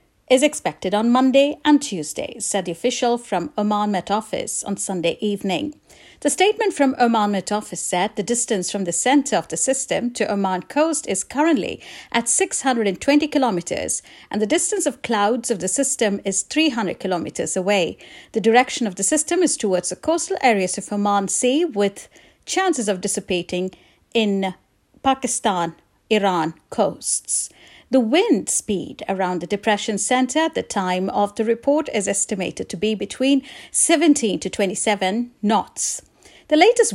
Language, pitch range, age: English, 200-275 Hz, 50-69